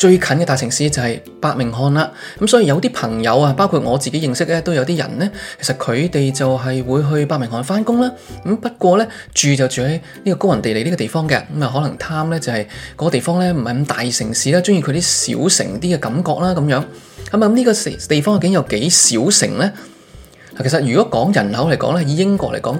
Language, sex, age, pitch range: Chinese, male, 20-39, 130-180 Hz